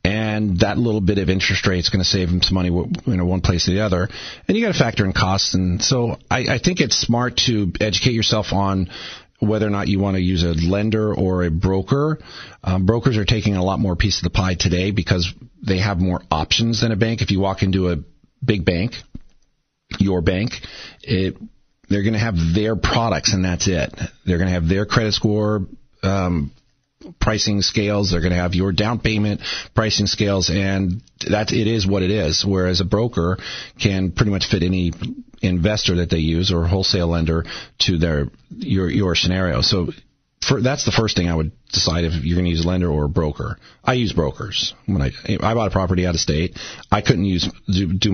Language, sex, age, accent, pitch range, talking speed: English, male, 40-59, American, 90-110 Hz, 215 wpm